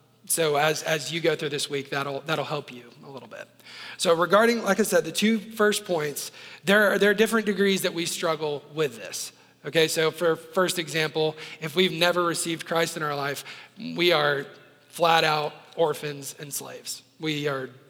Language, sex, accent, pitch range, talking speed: English, male, American, 150-180 Hz, 190 wpm